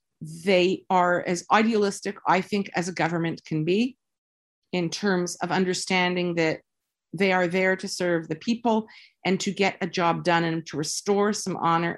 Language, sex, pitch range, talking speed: English, female, 165-220 Hz, 170 wpm